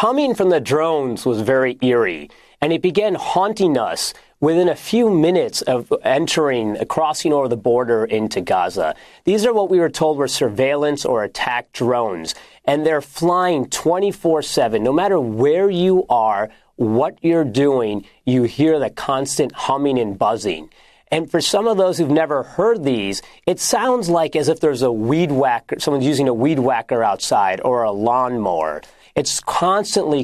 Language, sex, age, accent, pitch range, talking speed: English, male, 30-49, American, 130-180 Hz, 165 wpm